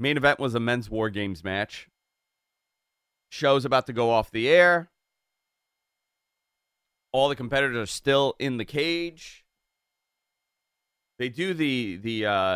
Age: 30-49